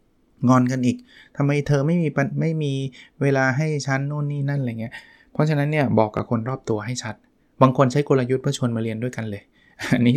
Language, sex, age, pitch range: Thai, male, 20-39, 115-140 Hz